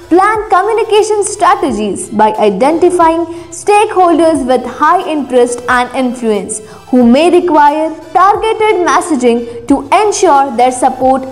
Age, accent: 20-39, Indian